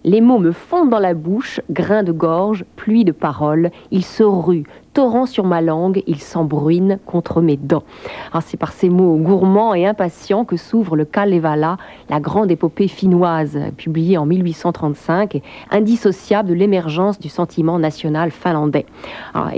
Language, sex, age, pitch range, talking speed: French, female, 50-69, 160-195 Hz, 165 wpm